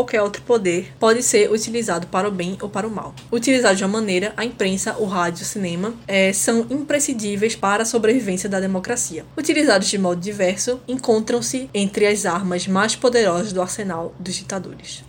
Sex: female